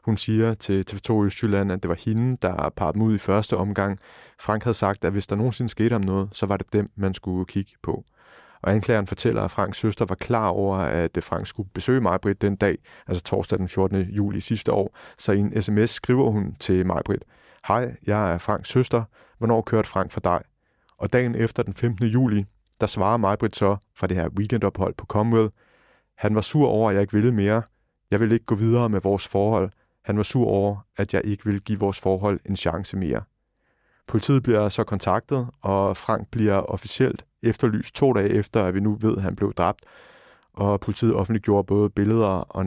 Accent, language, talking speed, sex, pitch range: native, Danish, 210 wpm, male, 95-115 Hz